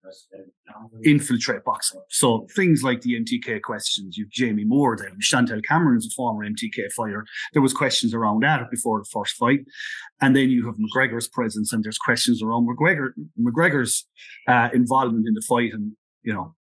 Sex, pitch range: male, 115-160 Hz